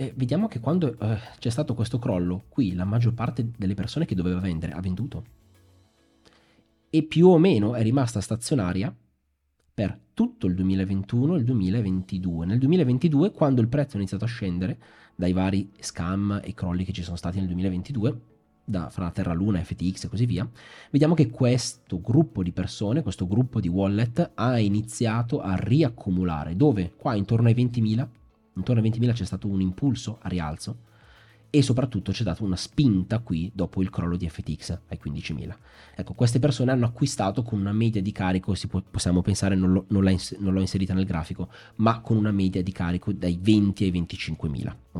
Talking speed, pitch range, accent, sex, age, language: 175 wpm, 95-120 Hz, native, male, 30-49, Italian